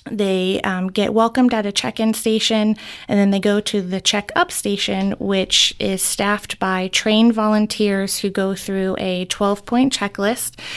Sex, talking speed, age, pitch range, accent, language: female, 155 wpm, 20-39, 195-235 Hz, American, English